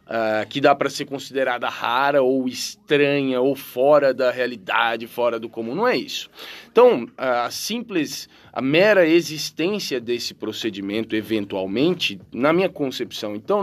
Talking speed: 135 wpm